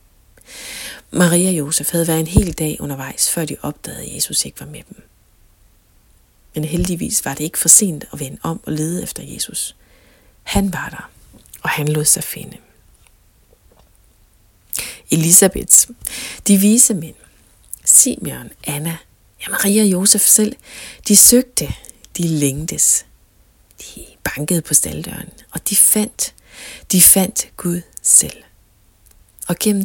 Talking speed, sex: 135 wpm, female